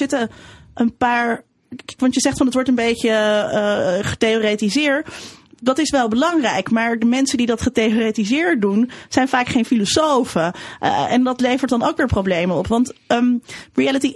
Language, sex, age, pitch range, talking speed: Dutch, female, 30-49, 210-265 Hz, 175 wpm